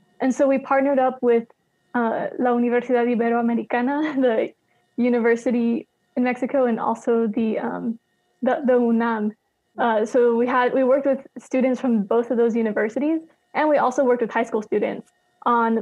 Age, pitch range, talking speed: 20-39, 230-255 Hz, 165 wpm